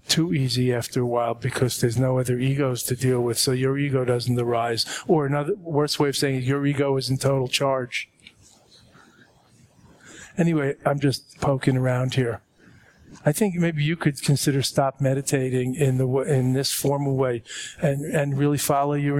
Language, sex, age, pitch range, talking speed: English, male, 50-69, 125-145 Hz, 170 wpm